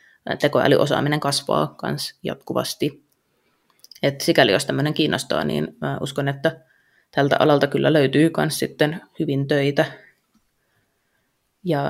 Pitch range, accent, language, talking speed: 140-160 Hz, native, Finnish, 100 wpm